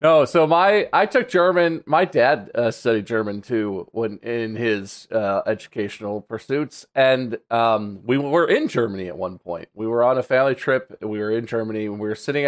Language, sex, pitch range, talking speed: English, male, 105-145 Hz, 195 wpm